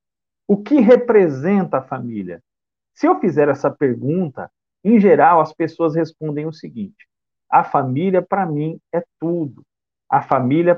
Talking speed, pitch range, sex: 140 wpm, 135-185 Hz, male